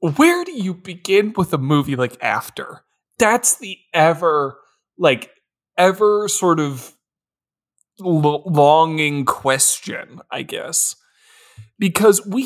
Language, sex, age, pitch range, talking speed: English, male, 20-39, 150-235 Hz, 105 wpm